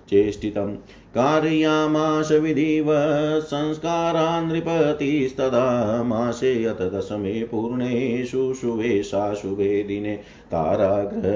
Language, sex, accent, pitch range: Hindi, male, native, 105-135 Hz